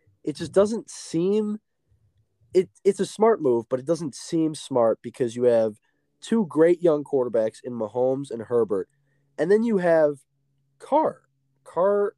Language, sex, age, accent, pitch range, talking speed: English, male, 20-39, American, 115-165 Hz, 160 wpm